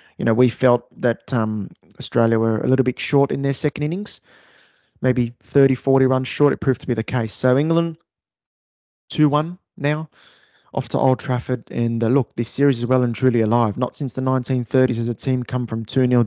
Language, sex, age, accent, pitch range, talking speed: English, male, 20-39, Australian, 115-135 Hz, 200 wpm